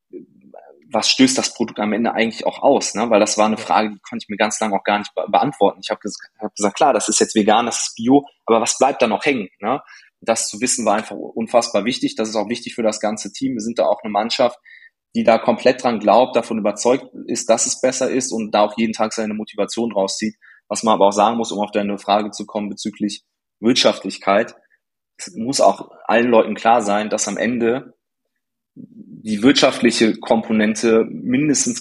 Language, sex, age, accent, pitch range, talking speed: German, male, 20-39, German, 105-130 Hz, 205 wpm